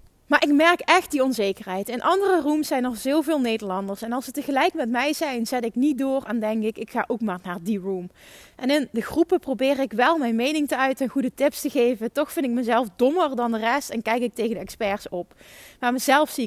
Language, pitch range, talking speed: Dutch, 230-300 Hz, 250 wpm